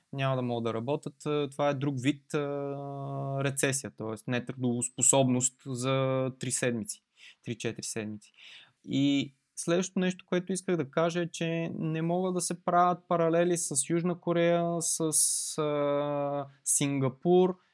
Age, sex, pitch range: 20-39, male, 130-165 Hz